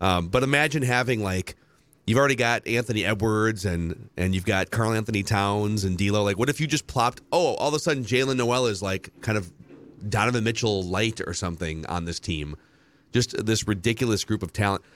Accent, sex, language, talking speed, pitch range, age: American, male, English, 200 wpm, 95-125 Hz, 30-49